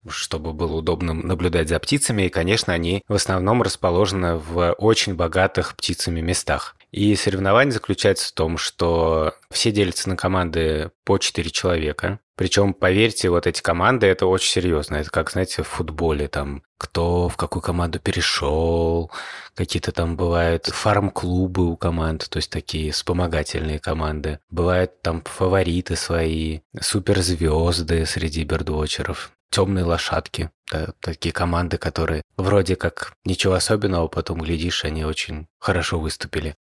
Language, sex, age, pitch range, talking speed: Russian, male, 20-39, 85-100 Hz, 135 wpm